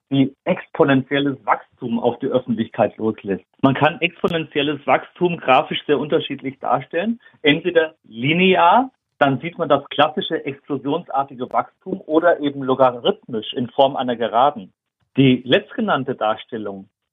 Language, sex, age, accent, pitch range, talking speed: German, male, 50-69, German, 130-165 Hz, 120 wpm